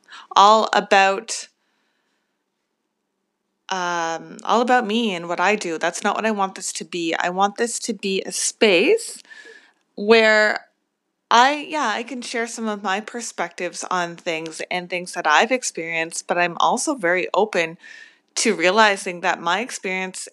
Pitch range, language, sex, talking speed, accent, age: 180-230 Hz, English, female, 155 wpm, American, 30-49